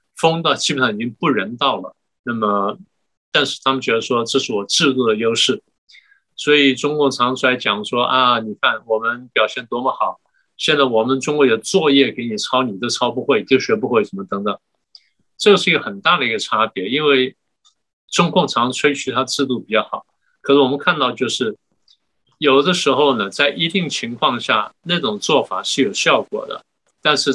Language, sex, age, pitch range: Chinese, male, 50-69, 120-145 Hz